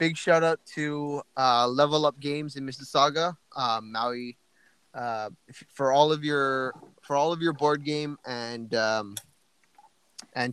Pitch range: 115-140 Hz